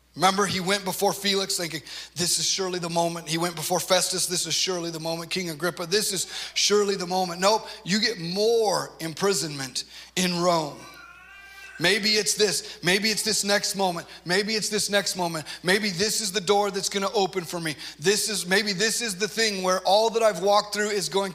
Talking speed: 205 wpm